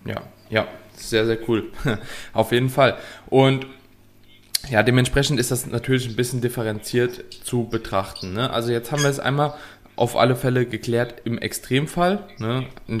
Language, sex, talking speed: German, male, 155 wpm